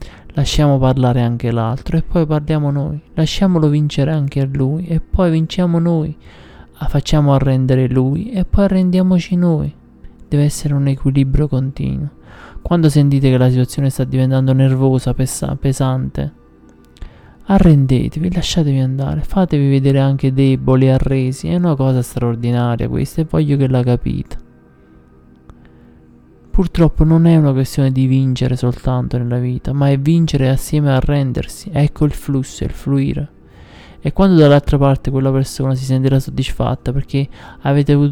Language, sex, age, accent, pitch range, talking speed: Italian, male, 20-39, native, 125-150 Hz, 140 wpm